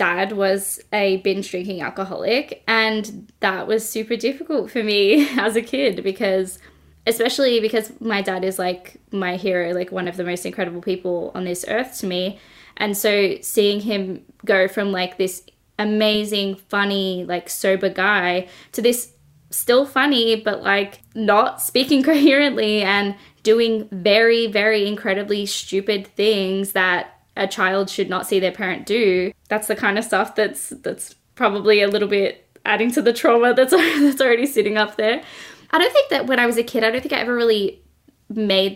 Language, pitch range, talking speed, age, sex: English, 185-225 Hz, 175 wpm, 10-29, female